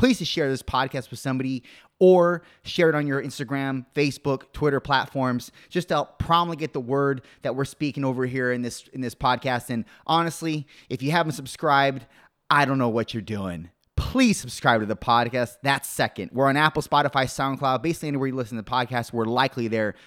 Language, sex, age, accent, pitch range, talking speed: English, male, 30-49, American, 120-155 Hz, 195 wpm